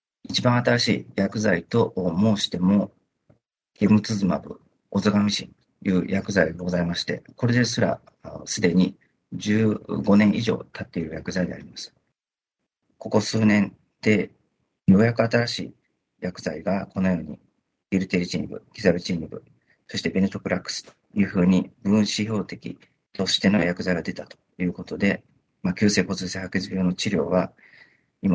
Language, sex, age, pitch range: Japanese, male, 40-59, 95-115 Hz